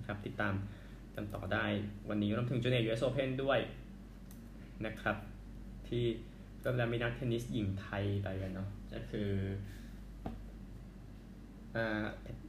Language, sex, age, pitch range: Thai, male, 20-39, 110-135 Hz